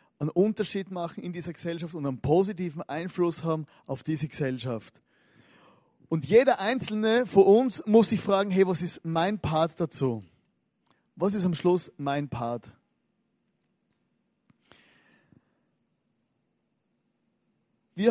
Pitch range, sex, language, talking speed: 155-190 Hz, male, German, 115 wpm